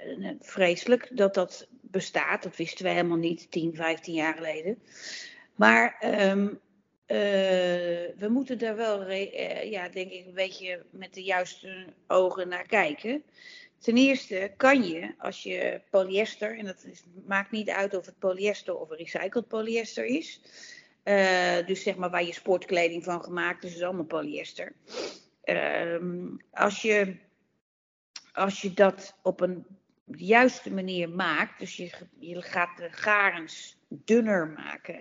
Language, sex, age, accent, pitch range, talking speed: Dutch, female, 40-59, Dutch, 175-220 Hz, 140 wpm